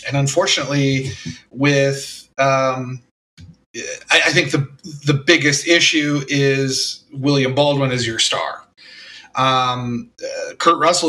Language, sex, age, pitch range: English, male, 30-49, 130-150 Hz